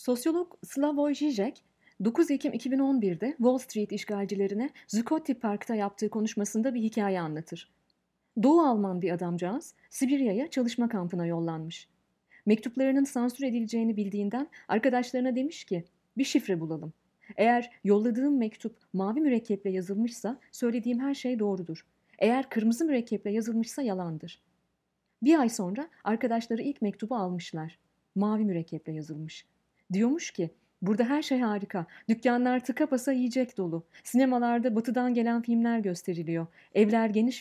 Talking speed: 125 wpm